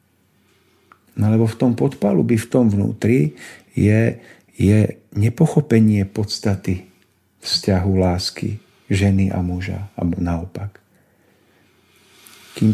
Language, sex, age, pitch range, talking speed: Slovak, male, 50-69, 105-120 Hz, 95 wpm